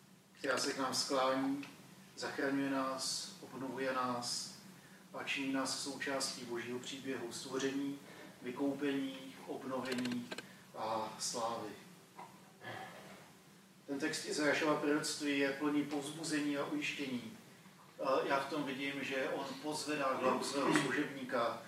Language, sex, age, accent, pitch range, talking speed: Czech, male, 40-59, native, 130-150 Hz, 105 wpm